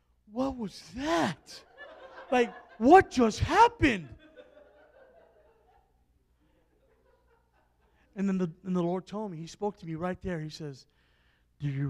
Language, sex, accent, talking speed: English, male, American, 125 wpm